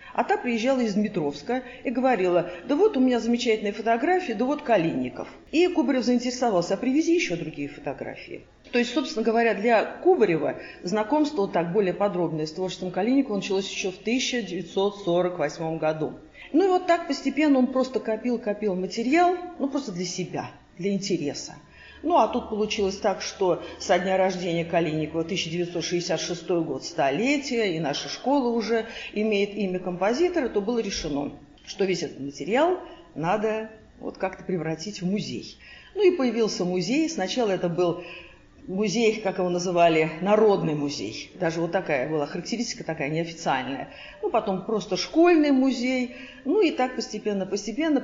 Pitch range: 175-250 Hz